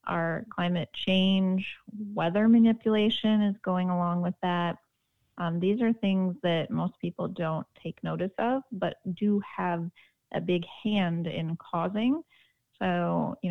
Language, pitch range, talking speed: English, 175-215 Hz, 140 wpm